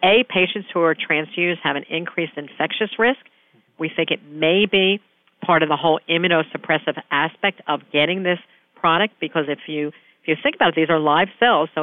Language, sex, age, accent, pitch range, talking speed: English, female, 50-69, American, 145-190 Hz, 195 wpm